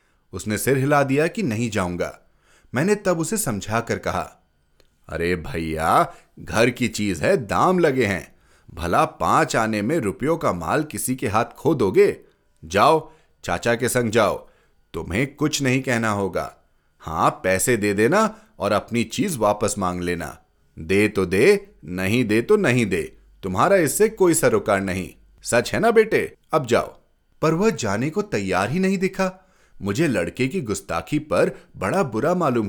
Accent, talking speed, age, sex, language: native, 165 wpm, 30-49, male, Hindi